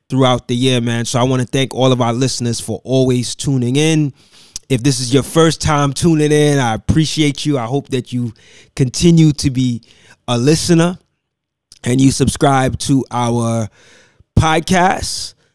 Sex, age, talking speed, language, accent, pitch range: male, 20-39, 165 wpm, English, American, 125-150 Hz